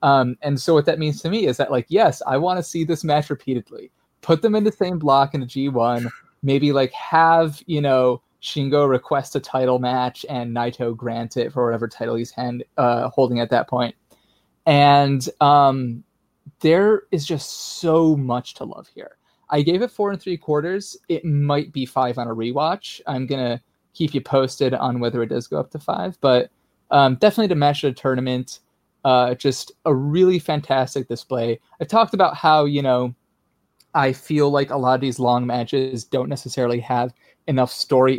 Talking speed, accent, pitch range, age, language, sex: 195 wpm, American, 125-155 Hz, 20-39, English, male